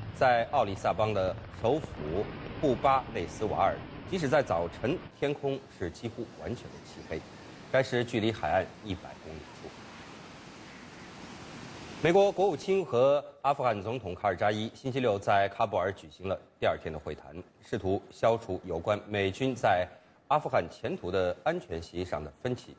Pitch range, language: 90-135 Hz, English